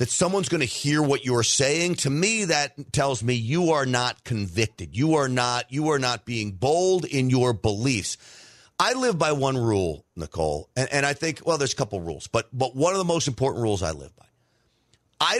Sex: male